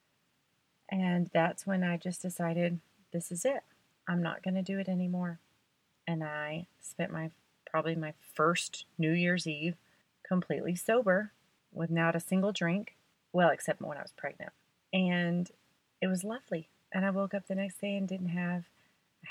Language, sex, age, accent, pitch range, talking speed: English, female, 30-49, American, 165-190 Hz, 170 wpm